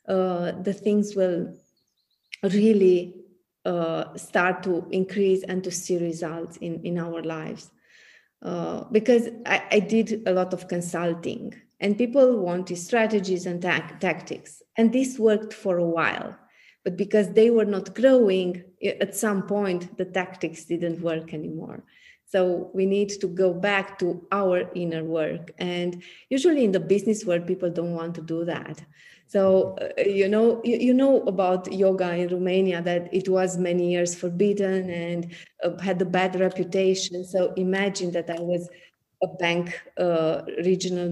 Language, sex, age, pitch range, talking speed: English, female, 30-49, 175-200 Hz, 155 wpm